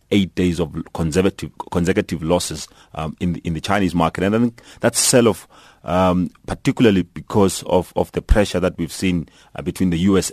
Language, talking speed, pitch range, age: English, 170 wpm, 85-95 Hz, 30-49